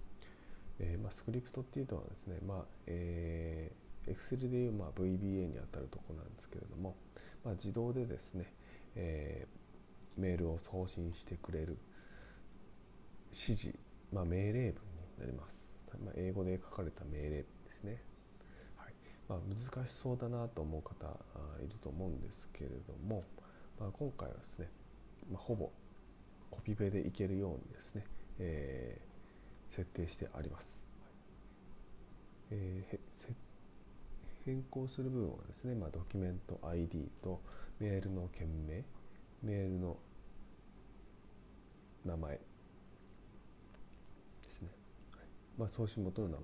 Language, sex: Japanese, male